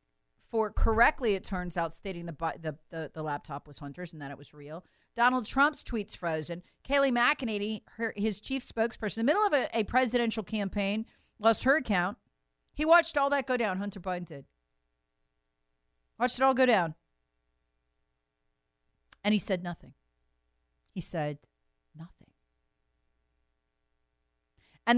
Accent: American